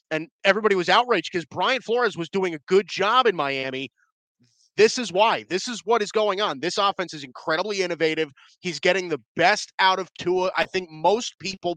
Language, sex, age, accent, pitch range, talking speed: English, male, 30-49, American, 165-205 Hz, 200 wpm